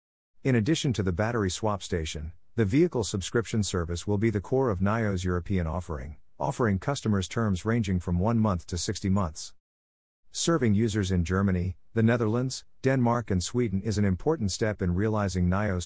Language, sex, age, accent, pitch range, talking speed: English, male, 50-69, American, 90-110 Hz, 170 wpm